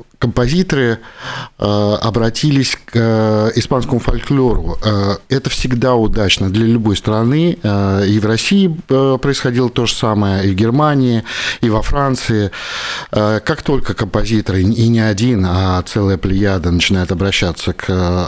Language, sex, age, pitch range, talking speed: Russian, male, 50-69, 95-115 Hz, 120 wpm